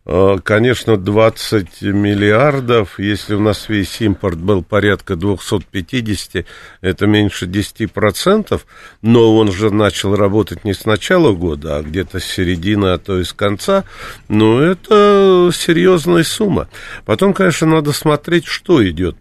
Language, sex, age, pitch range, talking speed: Russian, male, 50-69, 95-130 Hz, 130 wpm